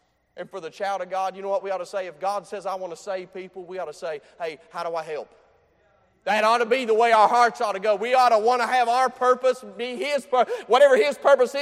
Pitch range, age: 180-250 Hz, 40-59